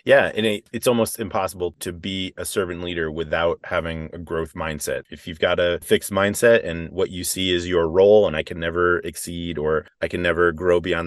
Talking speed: 210 wpm